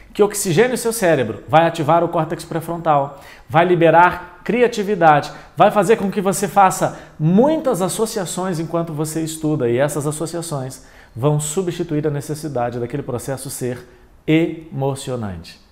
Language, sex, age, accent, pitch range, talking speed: Portuguese, male, 40-59, Brazilian, 115-155 Hz, 135 wpm